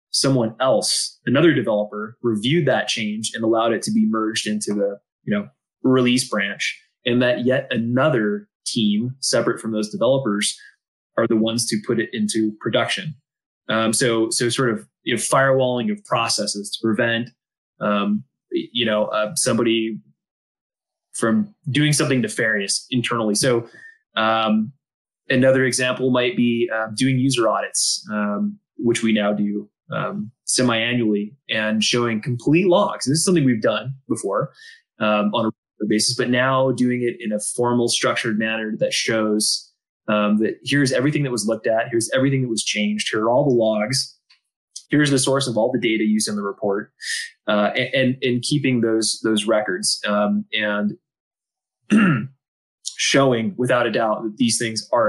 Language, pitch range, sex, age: English, 110-130 Hz, male, 20-39